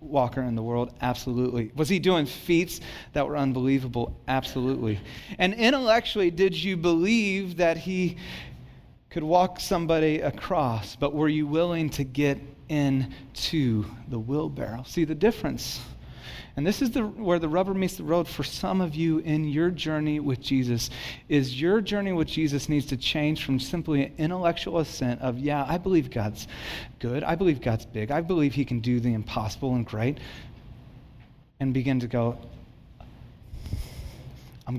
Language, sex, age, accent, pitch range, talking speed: English, male, 30-49, American, 130-205 Hz, 160 wpm